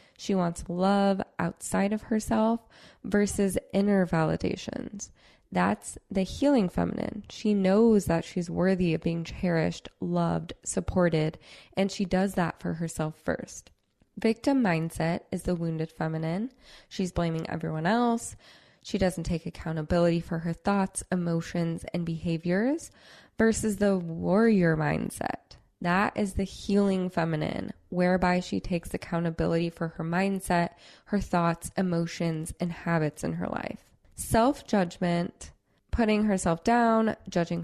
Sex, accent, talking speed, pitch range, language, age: female, American, 125 wpm, 165-200 Hz, English, 20-39